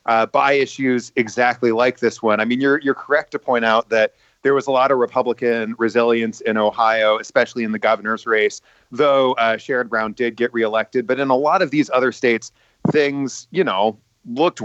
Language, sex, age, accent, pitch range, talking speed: English, male, 30-49, American, 115-135 Hz, 200 wpm